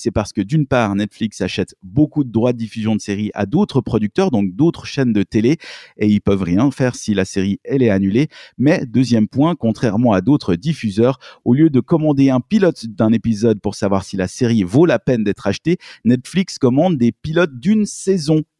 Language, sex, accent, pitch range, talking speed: French, male, French, 105-140 Hz, 205 wpm